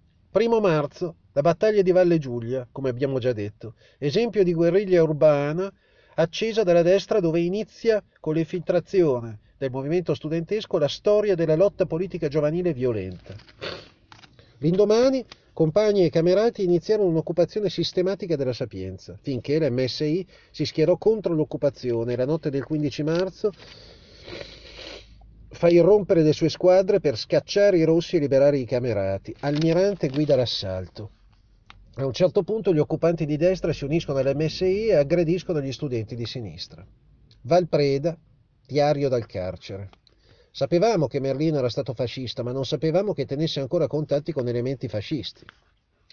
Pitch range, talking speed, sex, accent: 130-180 Hz, 140 wpm, male, native